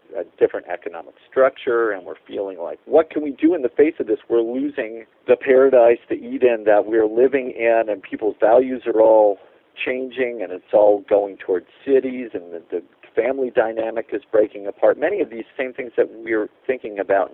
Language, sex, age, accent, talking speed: English, male, 50-69, American, 195 wpm